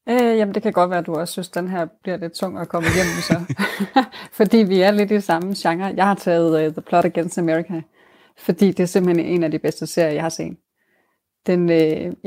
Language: Danish